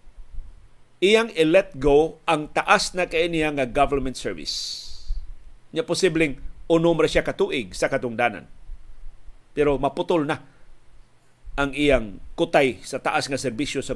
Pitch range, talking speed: 130-165 Hz, 110 wpm